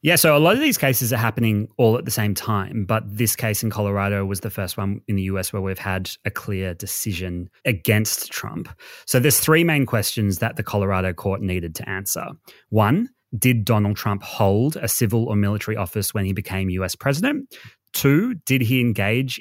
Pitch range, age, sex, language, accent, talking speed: 100-125 Hz, 30-49, male, English, Australian, 200 wpm